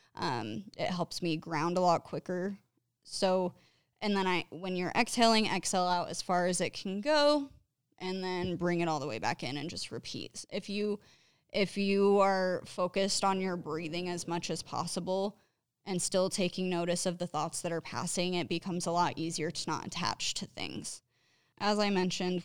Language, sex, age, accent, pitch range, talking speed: English, female, 20-39, American, 165-190 Hz, 190 wpm